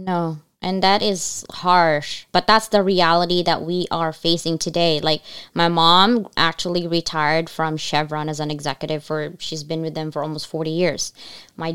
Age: 20-39